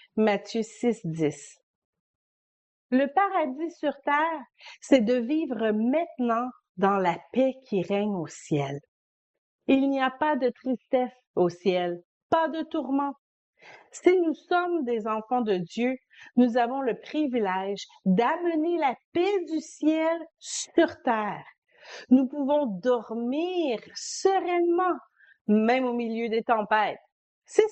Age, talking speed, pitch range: 50-69, 125 wpm, 215-320 Hz